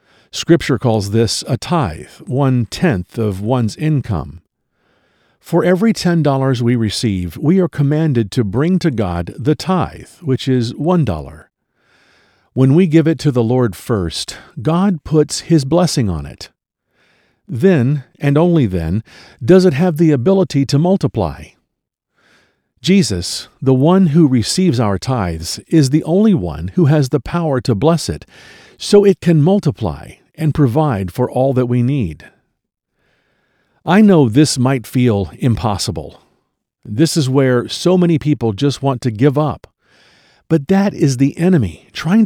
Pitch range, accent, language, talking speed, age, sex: 115-170 Hz, American, English, 150 wpm, 50-69, male